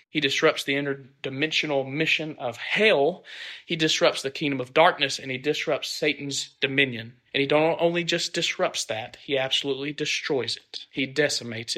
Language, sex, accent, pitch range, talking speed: English, male, American, 125-155 Hz, 160 wpm